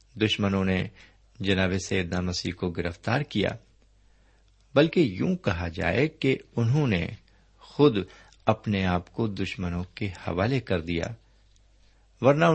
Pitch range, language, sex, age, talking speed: 95-115 Hz, Urdu, male, 50-69, 120 wpm